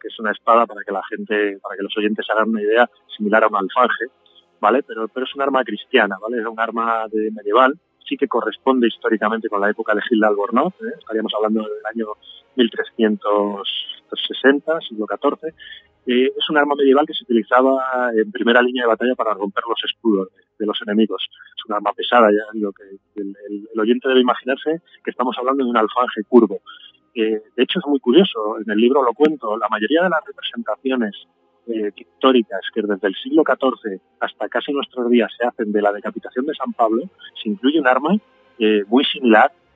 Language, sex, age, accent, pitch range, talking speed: Spanish, male, 30-49, Spanish, 105-130 Hz, 200 wpm